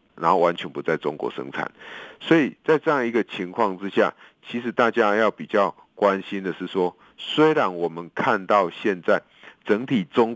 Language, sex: Chinese, male